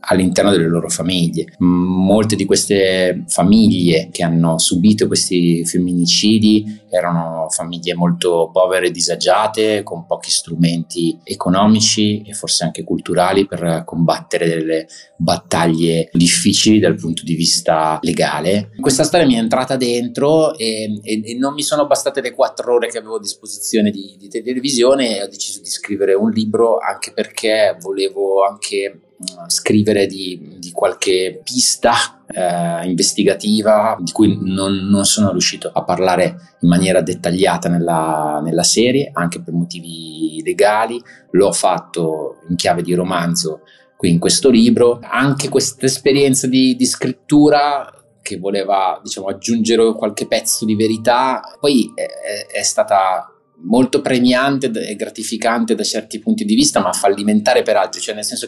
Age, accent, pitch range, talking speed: 30-49, native, 90-115 Hz, 145 wpm